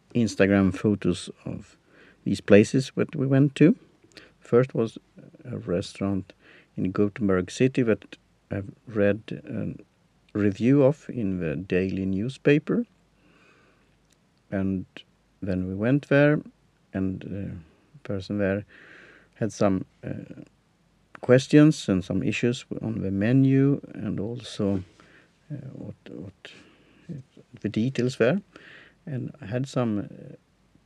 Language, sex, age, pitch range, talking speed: English, male, 50-69, 100-130 Hz, 115 wpm